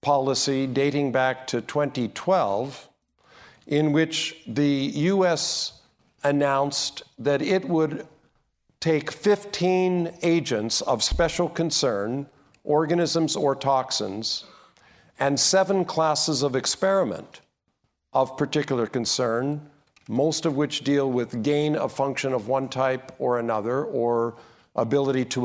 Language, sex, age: English, male, 50-69